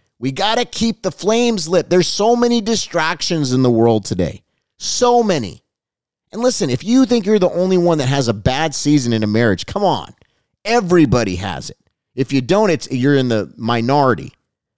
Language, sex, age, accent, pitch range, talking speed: English, male, 30-49, American, 125-180 Hz, 190 wpm